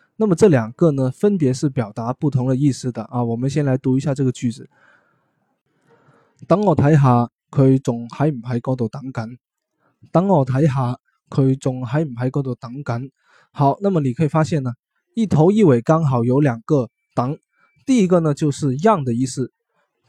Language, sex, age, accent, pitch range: Chinese, male, 20-39, native, 125-165 Hz